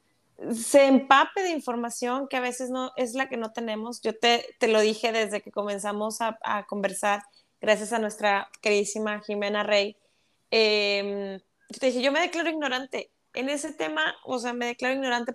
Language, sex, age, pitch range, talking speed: Spanish, female, 20-39, 215-250 Hz, 175 wpm